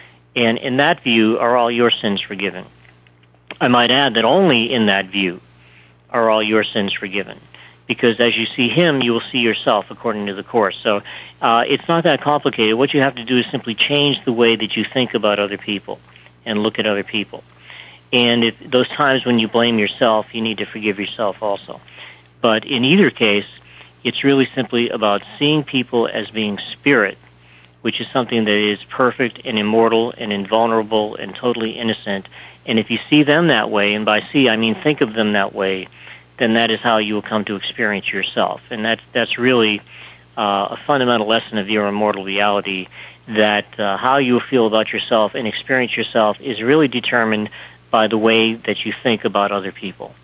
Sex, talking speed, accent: male, 195 wpm, American